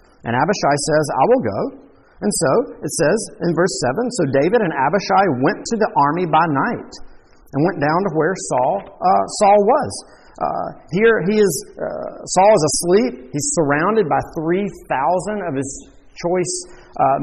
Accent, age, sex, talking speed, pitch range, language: American, 40-59, male, 165 wpm, 140-185 Hz, English